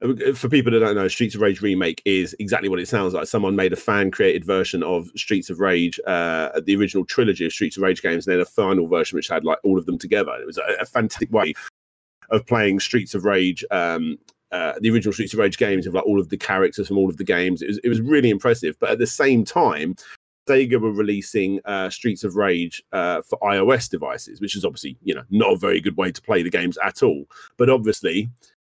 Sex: male